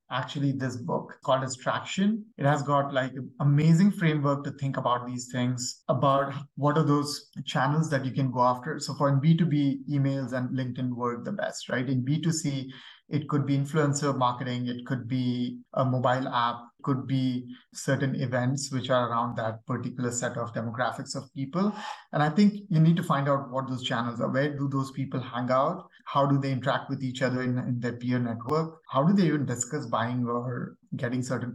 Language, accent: English, Indian